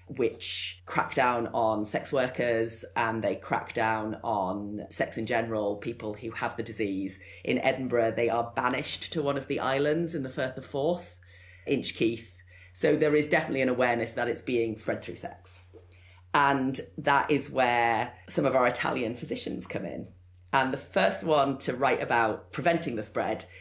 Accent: British